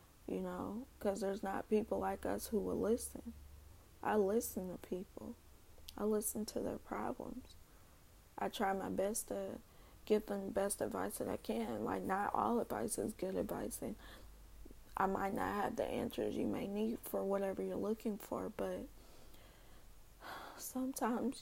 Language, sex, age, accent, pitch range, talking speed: English, female, 20-39, American, 180-215 Hz, 160 wpm